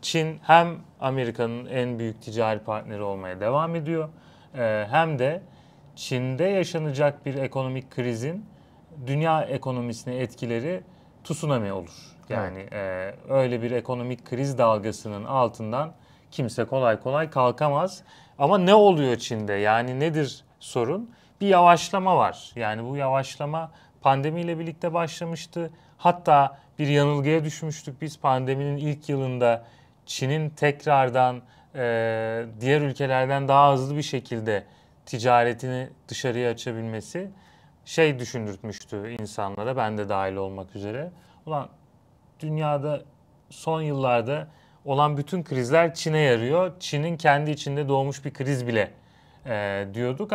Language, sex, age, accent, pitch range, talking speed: Turkish, male, 30-49, native, 120-160 Hz, 115 wpm